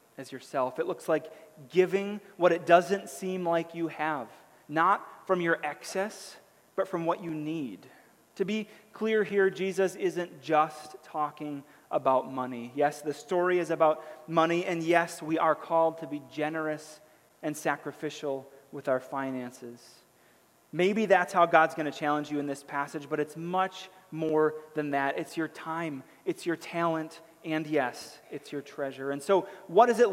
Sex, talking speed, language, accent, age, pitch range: male, 165 wpm, English, American, 30-49, 155-195 Hz